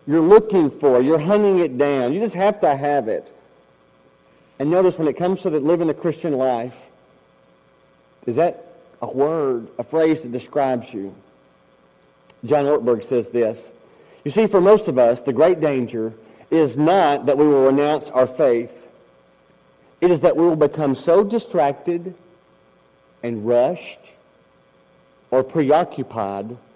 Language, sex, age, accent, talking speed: English, male, 40-59, American, 145 wpm